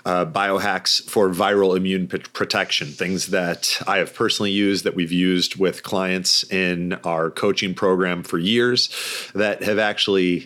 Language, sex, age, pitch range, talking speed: English, male, 30-49, 90-100 Hz, 150 wpm